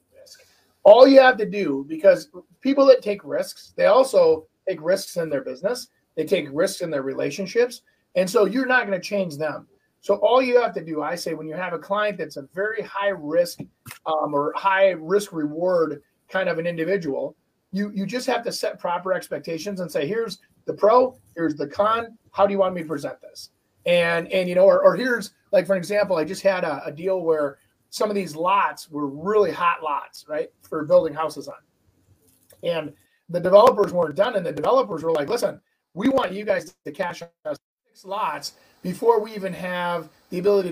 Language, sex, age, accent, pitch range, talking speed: English, male, 30-49, American, 170-215 Hz, 200 wpm